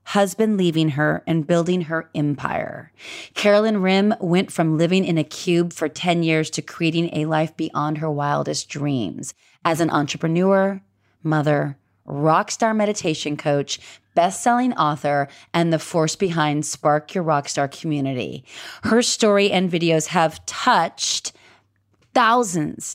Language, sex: English, female